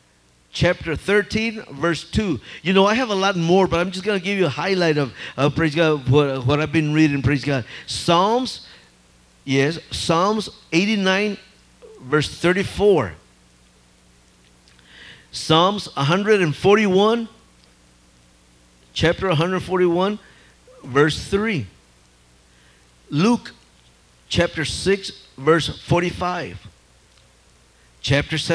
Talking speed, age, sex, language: 105 wpm, 50-69, male, English